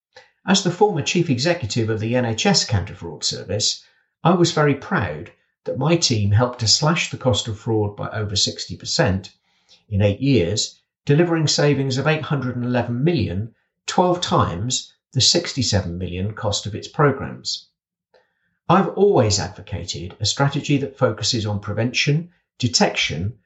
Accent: British